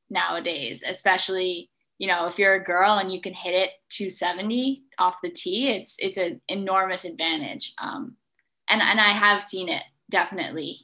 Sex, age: female, 10-29